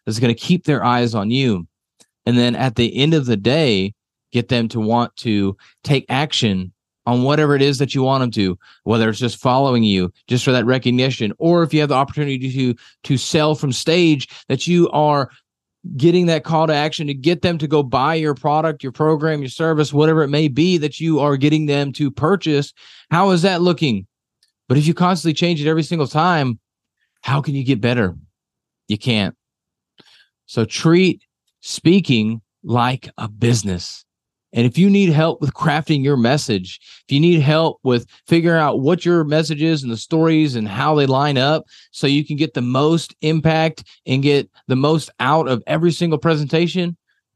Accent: American